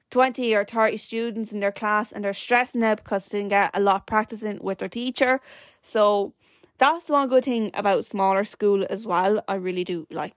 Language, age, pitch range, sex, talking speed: English, 10-29, 200-250 Hz, female, 205 wpm